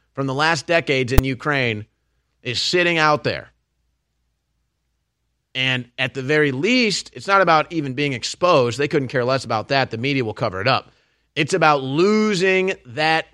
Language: English